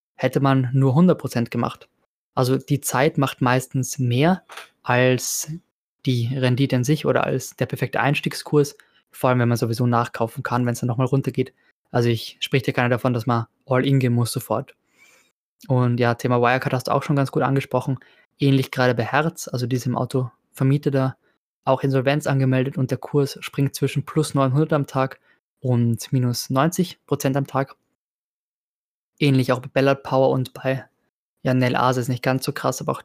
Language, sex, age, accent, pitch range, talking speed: German, male, 20-39, German, 125-145 Hz, 180 wpm